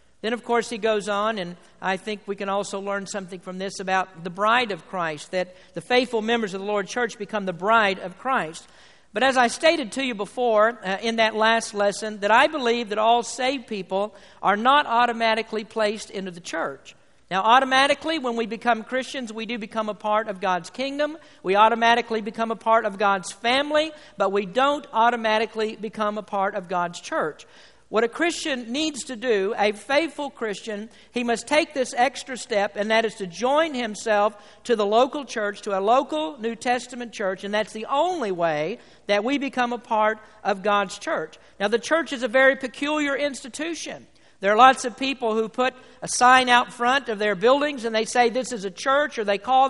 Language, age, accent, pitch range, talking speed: English, 50-69, American, 205-255 Hz, 205 wpm